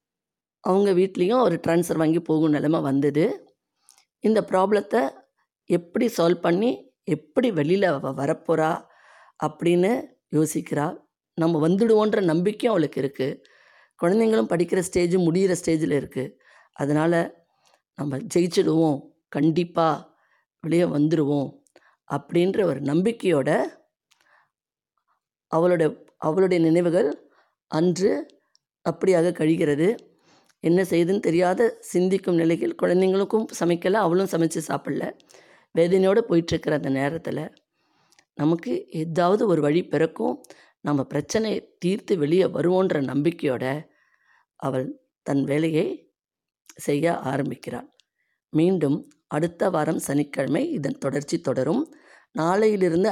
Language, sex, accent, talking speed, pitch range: Tamil, female, native, 90 wpm, 150-185 Hz